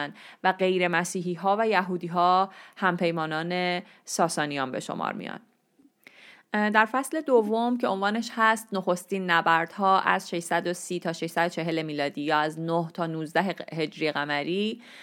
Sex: female